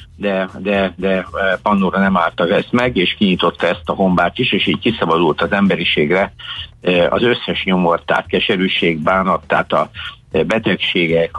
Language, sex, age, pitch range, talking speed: Hungarian, male, 60-79, 90-105 Hz, 150 wpm